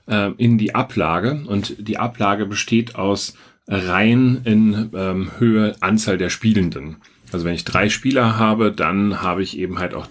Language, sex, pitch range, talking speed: German, male, 95-110 Hz, 160 wpm